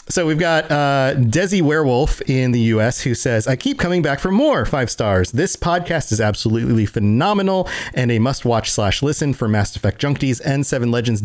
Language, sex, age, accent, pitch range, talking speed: English, male, 40-59, American, 115-155 Hz, 195 wpm